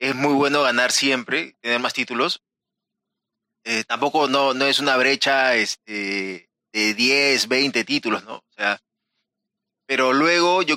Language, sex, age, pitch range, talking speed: Spanish, male, 30-49, 120-155 Hz, 145 wpm